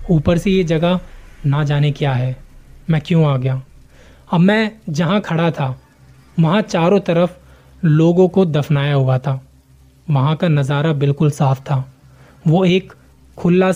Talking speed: 150 wpm